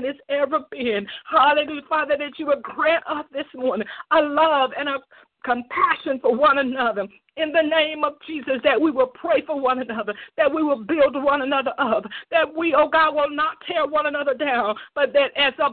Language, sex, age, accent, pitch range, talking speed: English, female, 50-69, American, 280-330 Hz, 200 wpm